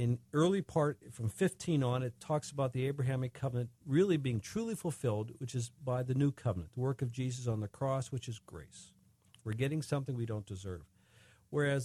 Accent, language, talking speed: American, English, 200 wpm